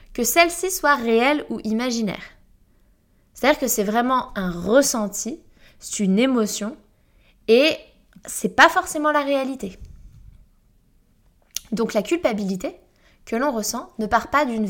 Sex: female